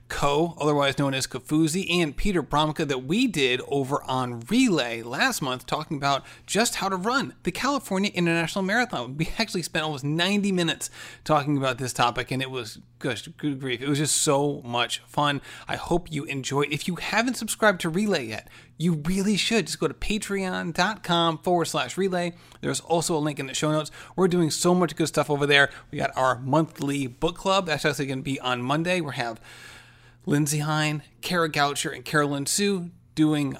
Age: 30-49